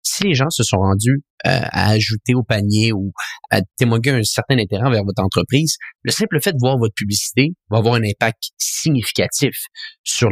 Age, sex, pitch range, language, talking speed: 30-49, male, 105-130 Hz, French, 190 wpm